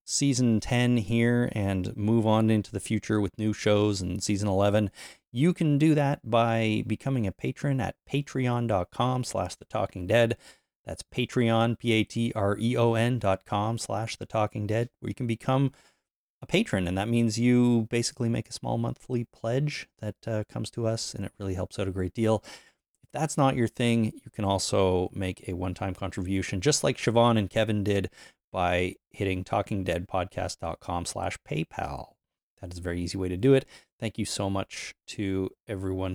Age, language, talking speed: 30-49, English, 175 wpm